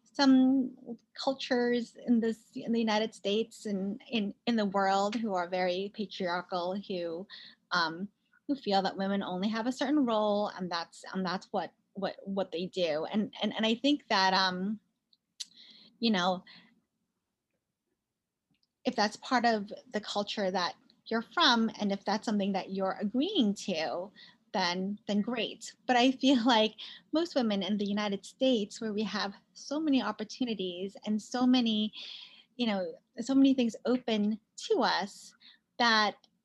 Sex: female